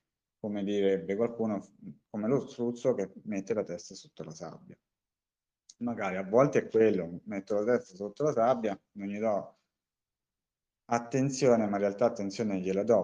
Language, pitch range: Italian, 95-120 Hz